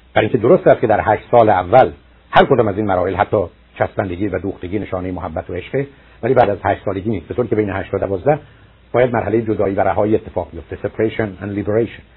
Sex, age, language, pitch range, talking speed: male, 60-79, Persian, 95-125 Hz, 220 wpm